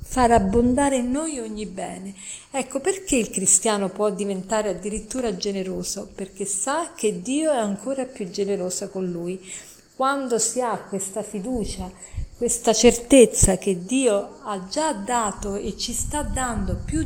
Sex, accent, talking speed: female, native, 145 wpm